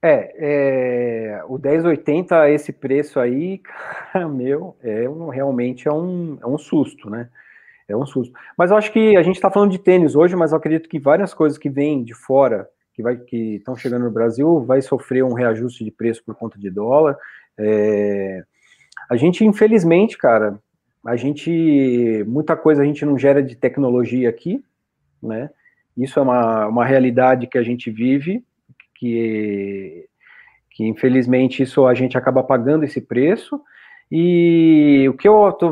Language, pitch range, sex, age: Portuguese, 125-170 Hz, male, 40-59